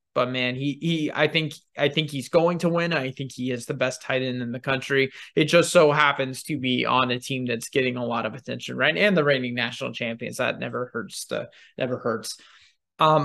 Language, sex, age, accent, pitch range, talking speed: English, male, 20-39, American, 140-180 Hz, 225 wpm